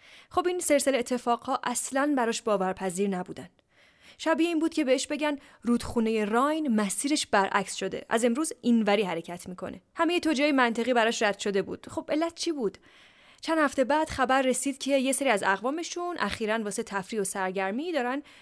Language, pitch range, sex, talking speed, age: Persian, 210-285 Hz, female, 170 wpm, 10-29